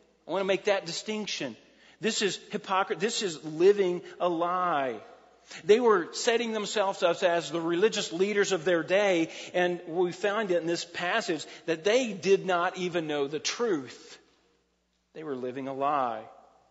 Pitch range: 150-200 Hz